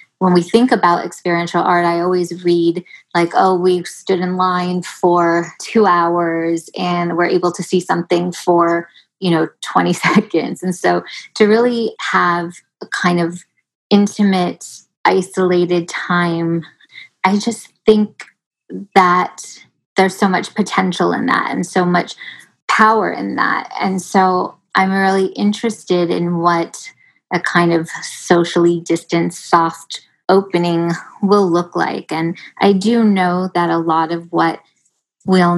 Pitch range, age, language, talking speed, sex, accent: 170-190 Hz, 20-39, English, 140 wpm, female, American